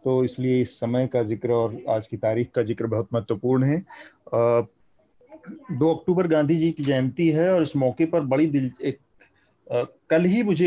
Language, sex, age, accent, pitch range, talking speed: Hindi, male, 30-49, native, 120-165 Hz, 185 wpm